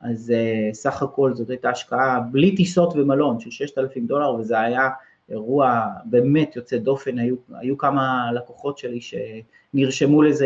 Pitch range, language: 120-165 Hz, English